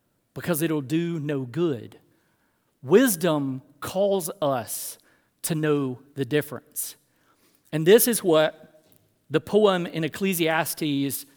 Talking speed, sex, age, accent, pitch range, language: 105 wpm, male, 40-59, American, 150-200 Hz, English